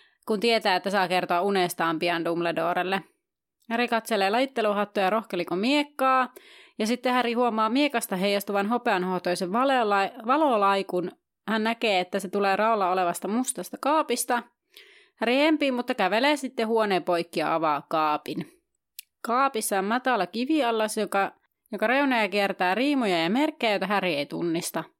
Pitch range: 185-245 Hz